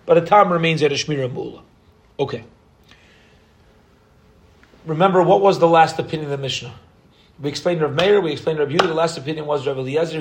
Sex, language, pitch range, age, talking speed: male, English, 135-160 Hz, 40-59, 180 wpm